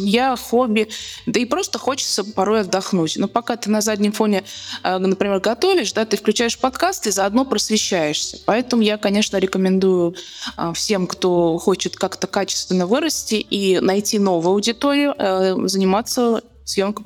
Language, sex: Russian, female